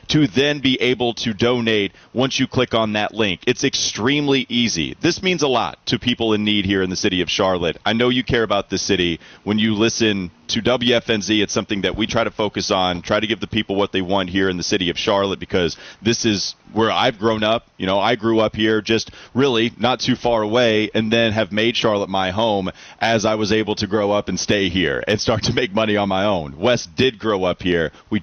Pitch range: 95-120 Hz